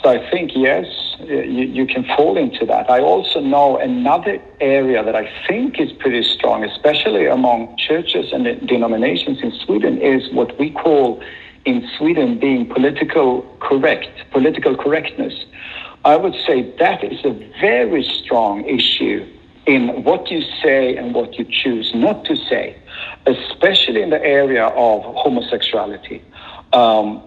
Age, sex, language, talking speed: 60-79, male, English, 145 wpm